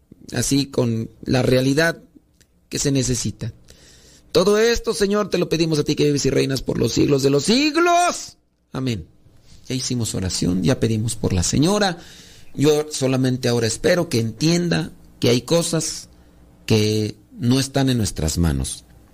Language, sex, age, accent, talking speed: Spanish, male, 40-59, Mexican, 155 wpm